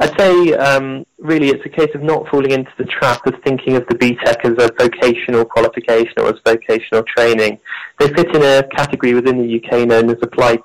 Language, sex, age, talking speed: English, male, 20-39, 210 wpm